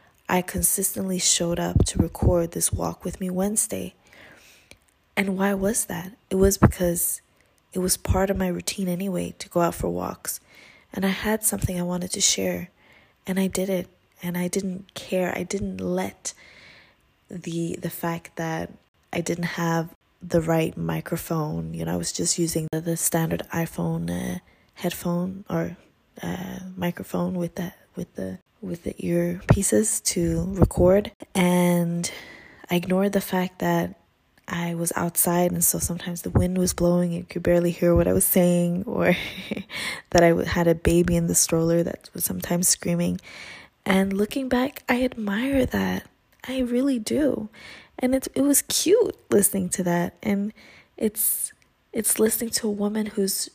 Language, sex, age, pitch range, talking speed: English, female, 20-39, 170-195 Hz, 160 wpm